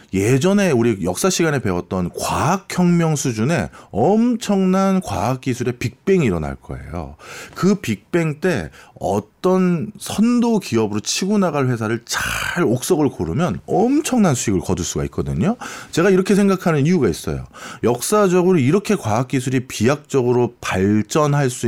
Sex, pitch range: male, 120-190 Hz